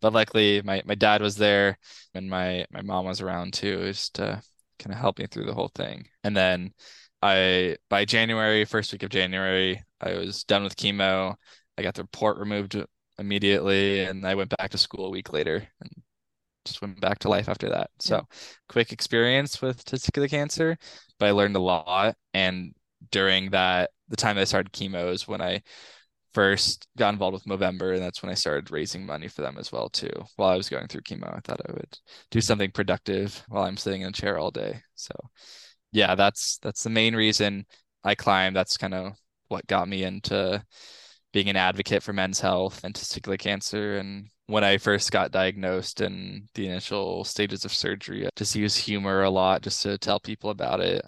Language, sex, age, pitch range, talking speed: English, male, 10-29, 95-105 Hz, 200 wpm